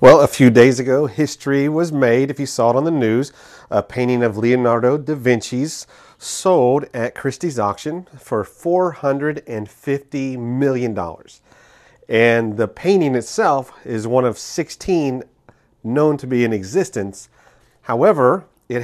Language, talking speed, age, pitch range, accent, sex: English, 135 wpm, 40-59, 110-140 Hz, American, male